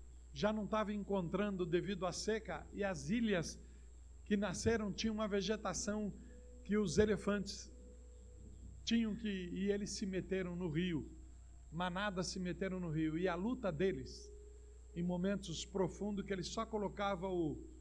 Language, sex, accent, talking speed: Portuguese, male, Brazilian, 140 wpm